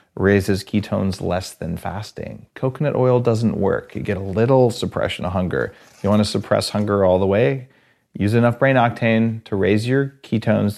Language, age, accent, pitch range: English, 30-49, American, 100-125 Hz